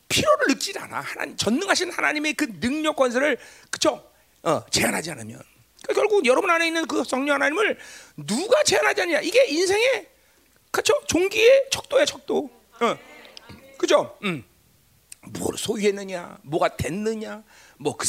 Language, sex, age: Korean, male, 40-59